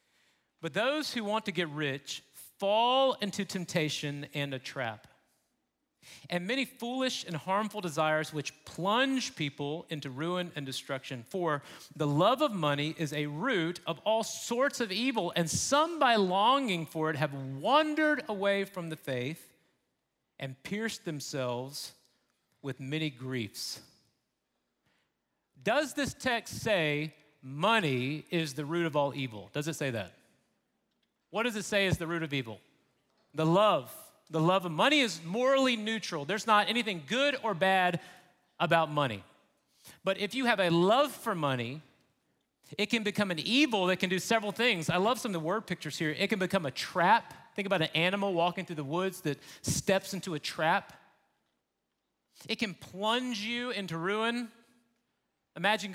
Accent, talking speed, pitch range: American, 160 wpm, 150-220 Hz